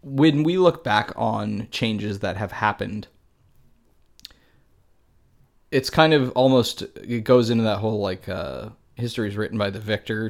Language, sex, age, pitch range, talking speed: English, male, 20-39, 100-120 Hz, 150 wpm